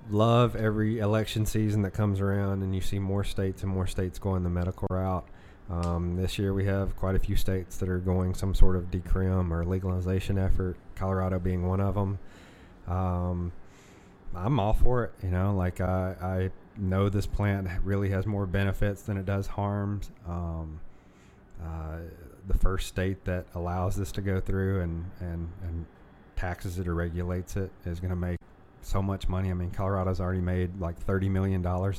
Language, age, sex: English, 30-49, male